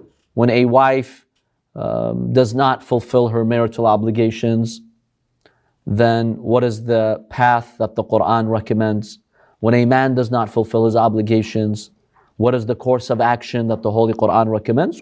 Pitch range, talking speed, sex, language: 120-160 Hz, 150 wpm, male, English